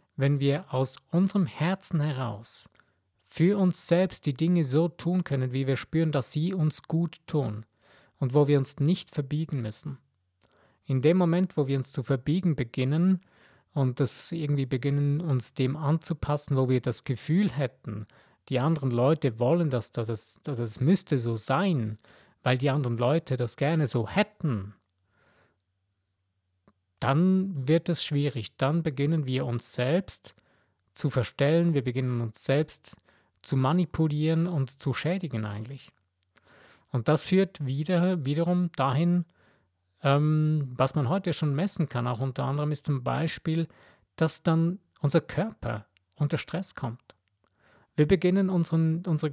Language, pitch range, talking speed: German, 125-165 Hz, 145 wpm